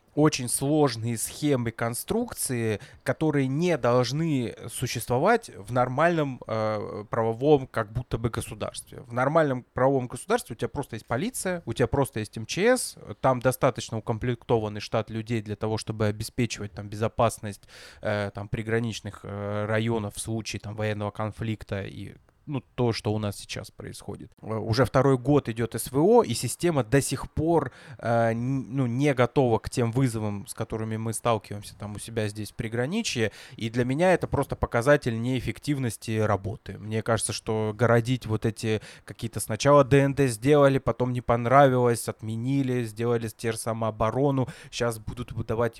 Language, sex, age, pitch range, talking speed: Russian, male, 20-39, 110-135 Hz, 145 wpm